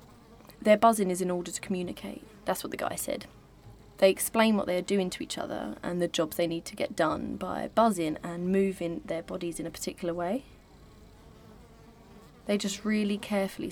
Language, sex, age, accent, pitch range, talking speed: English, female, 20-39, British, 180-210 Hz, 190 wpm